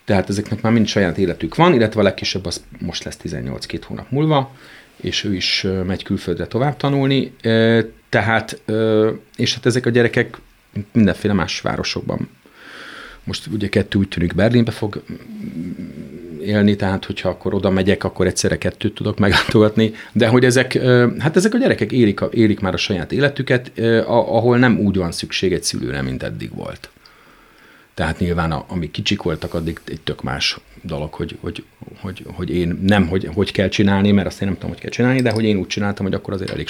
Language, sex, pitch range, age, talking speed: Hungarian, male, 95-120 Hz, 40-59, 180 wpm